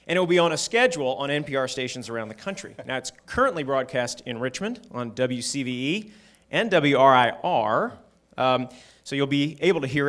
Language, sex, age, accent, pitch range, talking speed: English, male, 30-49, American, 120-150 Hz, 180 wpm